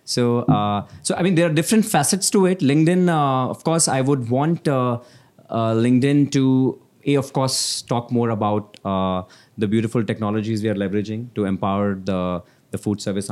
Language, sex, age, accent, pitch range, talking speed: English, male, 20-39, Indian, 95-125 Hz, 185 wpm